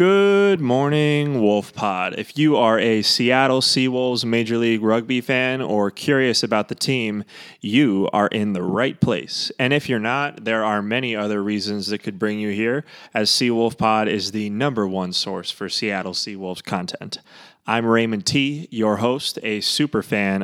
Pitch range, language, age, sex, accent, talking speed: 105-125 Hz, English, 20-39, male, American, 165 wpm